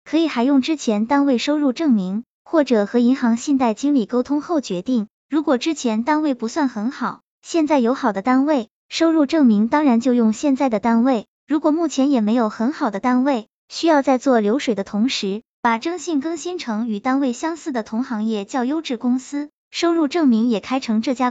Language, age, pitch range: Chinese, 20-39, 235-300 Hz